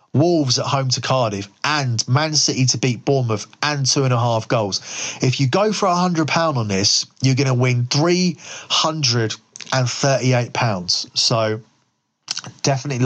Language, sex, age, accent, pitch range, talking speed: English, male, 30-49, British, 110-135 Hz, 145 wpm